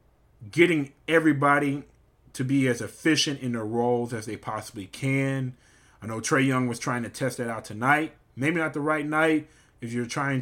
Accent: American